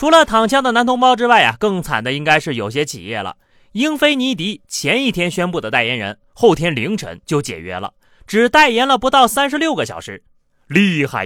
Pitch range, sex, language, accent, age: 155-250 Hz, male, Chinese, native, 30-49